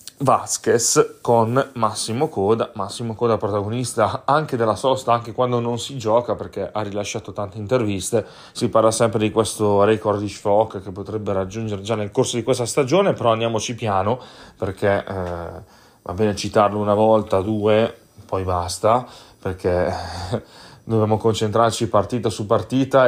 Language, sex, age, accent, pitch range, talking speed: Italian, male, 30-49, native, 100-120 Hz, 145 wpm